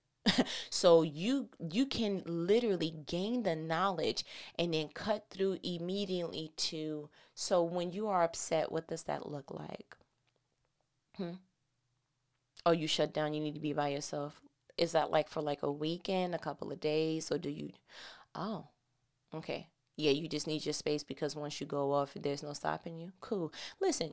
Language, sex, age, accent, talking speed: English, female, 20-39, American, 170 wpm